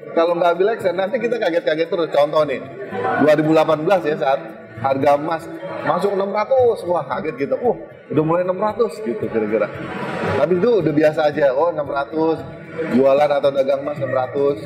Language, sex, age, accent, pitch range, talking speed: Indonesian, male, 30-49, native, 135-195 Hz, 150 wpm